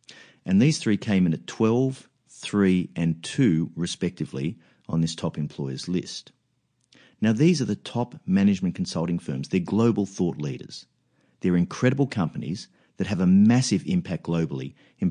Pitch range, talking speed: 85-125 Hz, 150 wpm